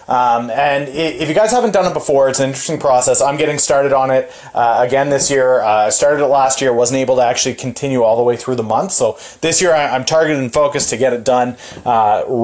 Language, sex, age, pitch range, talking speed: English, male, 30-49, 130-175 Hz, 245 wpm